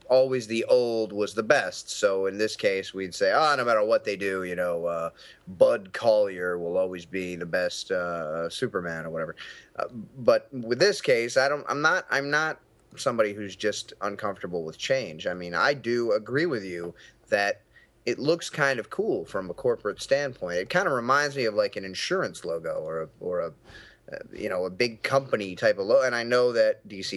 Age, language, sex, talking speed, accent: 30-49, English, male, 205 wpm, American